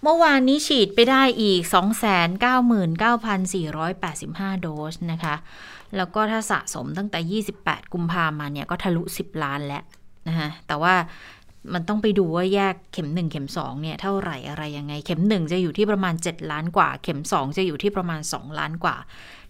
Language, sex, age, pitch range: Thai, female, 20-39, 165-205 Hz